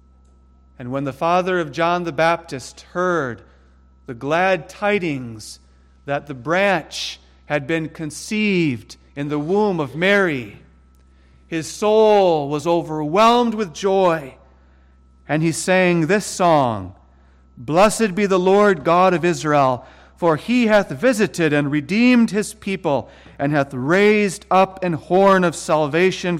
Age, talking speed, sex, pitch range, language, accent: 40-59, 130 wpm, male, 110-185 Hz, English, American